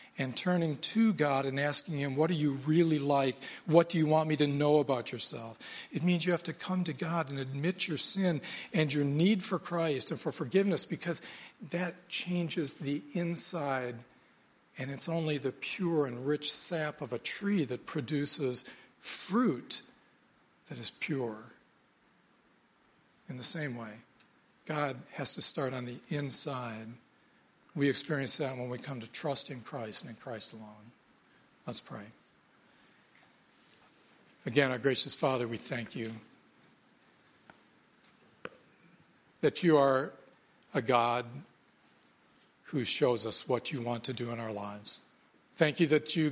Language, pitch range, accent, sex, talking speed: English, 125-160 Hz, American, male, 150 wpm